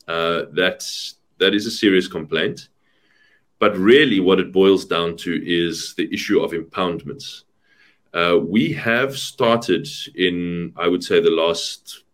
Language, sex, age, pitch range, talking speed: English, male, 30-49, 95-135 Hz, 145 wpm